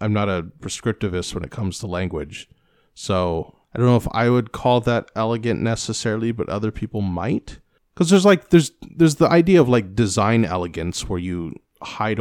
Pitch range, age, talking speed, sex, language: 90-120 Hz, 30-49, 185 wpm, male, English